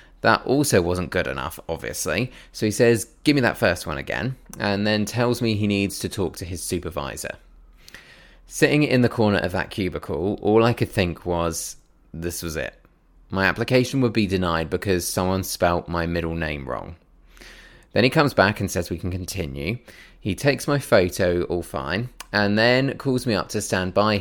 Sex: male